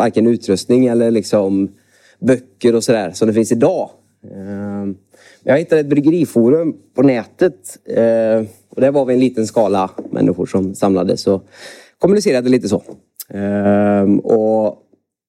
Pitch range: 100-130 Hz